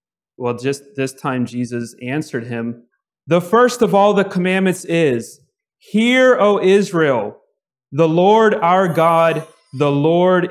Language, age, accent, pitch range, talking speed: English, 30-49, American, 140-185 Hz, 130 wpm